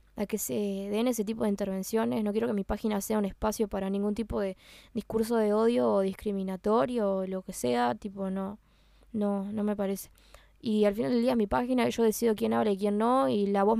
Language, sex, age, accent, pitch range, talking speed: Spanish, female, 10-29, Argentinian, 205-240 Hz, 225 wpm